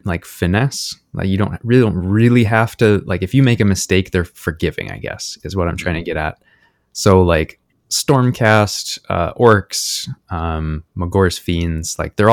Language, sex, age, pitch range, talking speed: English, male, 20-39, 85-105 Hz, 180 wpm